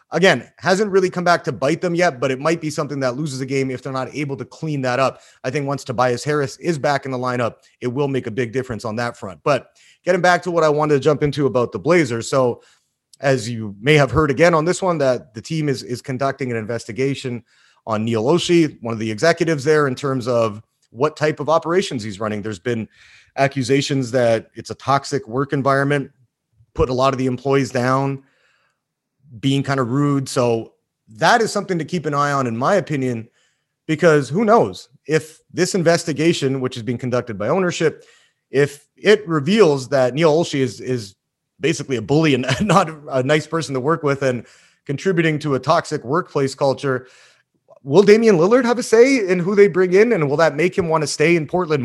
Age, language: 30-49, English